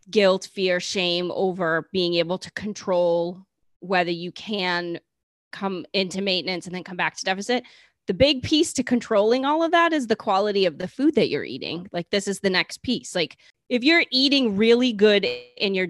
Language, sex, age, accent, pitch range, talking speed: English, female, 20-39, American, 180-230 Hz, 195 wpm